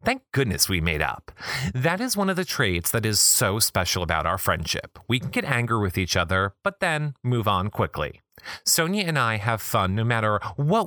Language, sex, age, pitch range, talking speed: English, male, 30-49, 95-140 Hz, 210 wpm